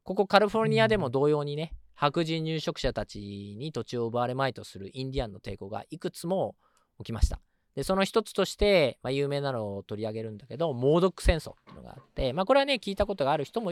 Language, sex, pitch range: Japanese, male, 115-160 Hz